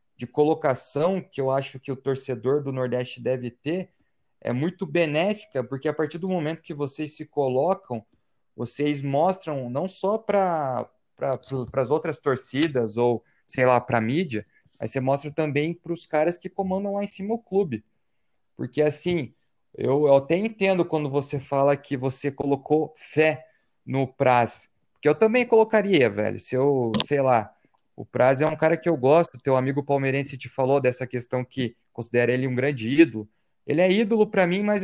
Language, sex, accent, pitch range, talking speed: Portuguese, male, Brazilian, 135-175 Hz, 180 wpm